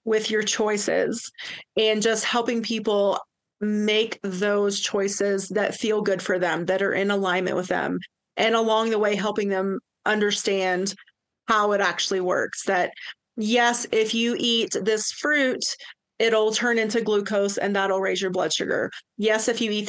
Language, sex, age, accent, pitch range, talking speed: English, female, 30-49, American, 205-240 Hz, 160 wpm